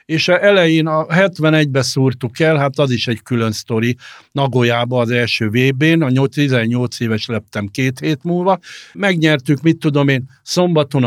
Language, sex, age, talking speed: Hungarian, male, 60-79, 155 wpm